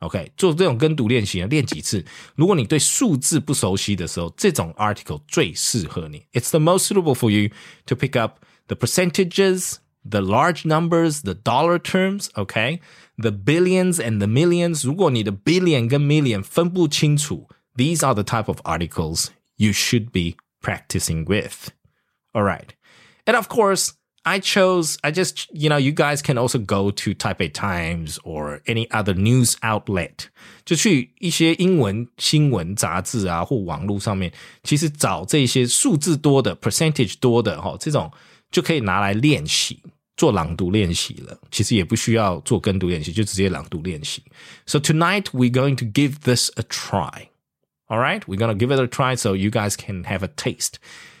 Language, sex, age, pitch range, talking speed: English, male, 20-39, 100-160 Hz, 100 wpm